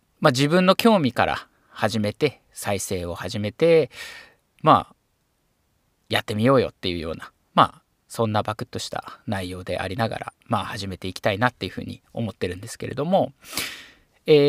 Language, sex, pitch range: Japanese, male, 105-145 Hz